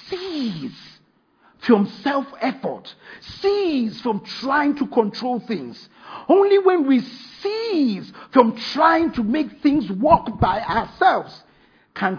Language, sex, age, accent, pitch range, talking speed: English, male, 50-69, Nigerian, 210-320 Hz, 110 wpm